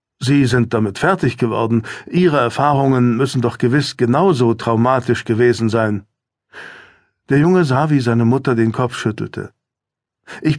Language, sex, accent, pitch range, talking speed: German, male, German, 115-140 Hz, 135 wpm